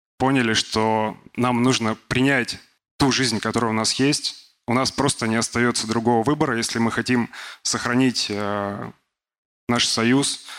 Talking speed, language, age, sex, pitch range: 135 wpm, Russian, 20-39, male, 115-135 Hz